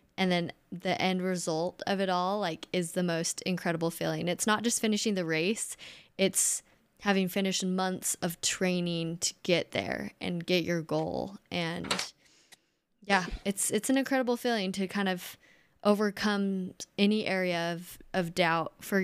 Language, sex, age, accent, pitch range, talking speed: English, female, 10-29, American, 180-215 Hz, 160 wpm